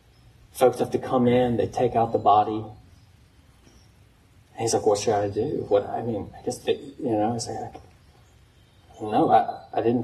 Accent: American